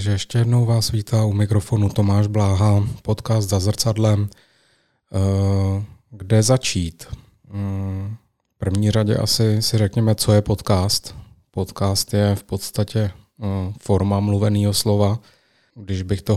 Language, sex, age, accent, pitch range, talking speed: Czech, male, 30-49, native, 100-110 Hz, 120 wpm